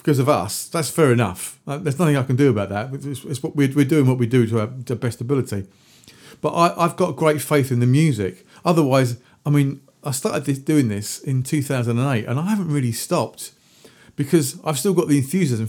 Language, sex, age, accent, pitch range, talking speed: English, male, 40-59, British, 120-155 Hz, 215 wpm